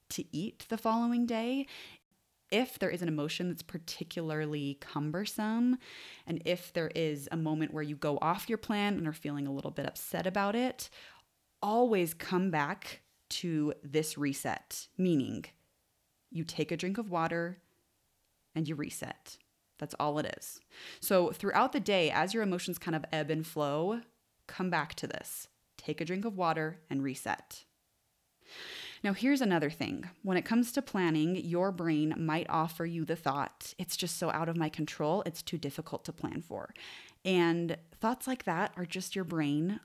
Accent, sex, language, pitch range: American, female, English, 155-200 Hz